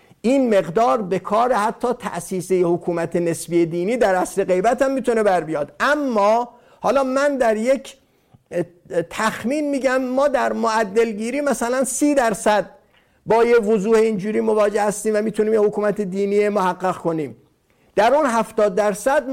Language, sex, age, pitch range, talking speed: Persian, male, 50-69, 195-240 Hz, 145 wpm